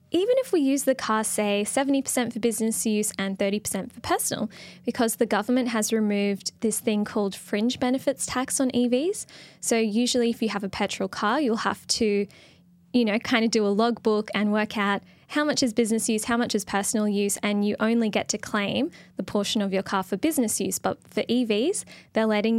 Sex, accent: female, Australian